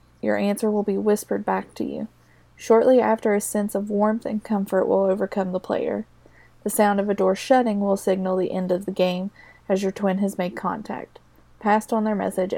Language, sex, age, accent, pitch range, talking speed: English, female, 20-39, American, 190-220 Hz, 205 wpm